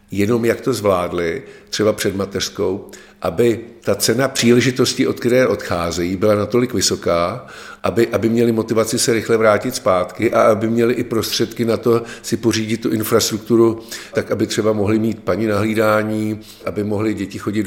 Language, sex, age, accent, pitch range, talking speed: Czech, male, 50-69, native, 100-115 Hz, 160 wpm